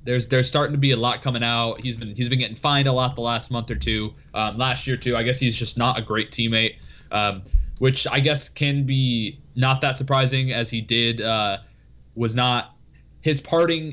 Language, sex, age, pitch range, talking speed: English, male, 20-39, 115-135 Hz, 220 wpm